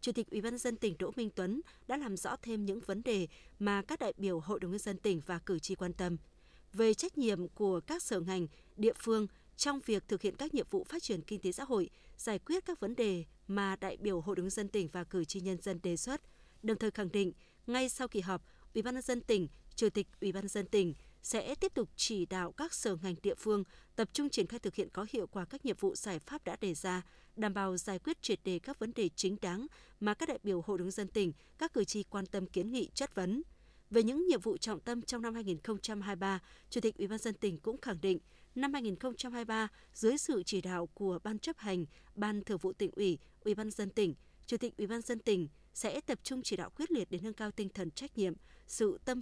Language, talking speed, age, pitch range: Vietnamese, 250 wpm, 20-39, 190-235 Hz